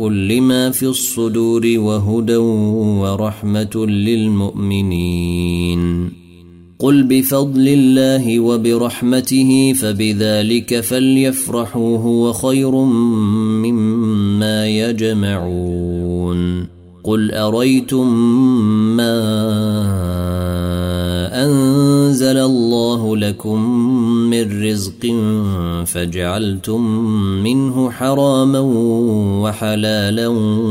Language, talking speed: Arabic, 55 wpm